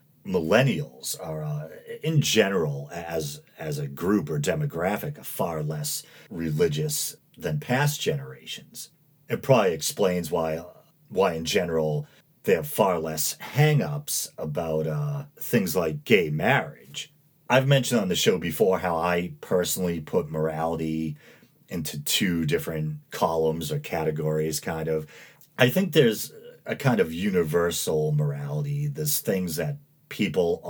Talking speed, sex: 130 wpm, male